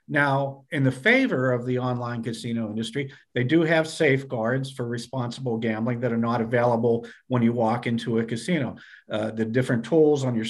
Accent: American